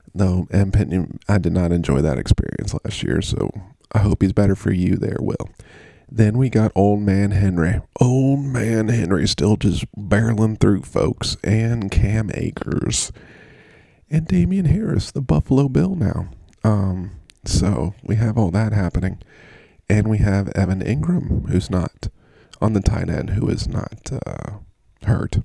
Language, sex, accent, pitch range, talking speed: English, male, American, 95-115 Hz, 160 wpm